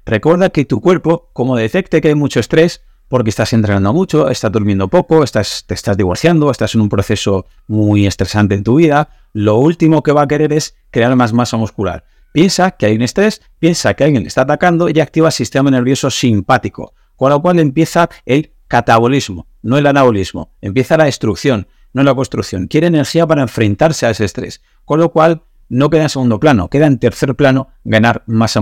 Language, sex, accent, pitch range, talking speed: Spanish, male, Spanish, 110-155 Hz, 195 wpm